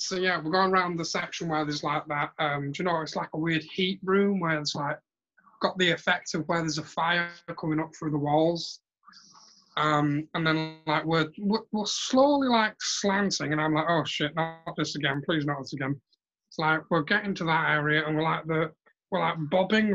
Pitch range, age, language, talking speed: 150-190 Hz, 30-49, English, 215 wpm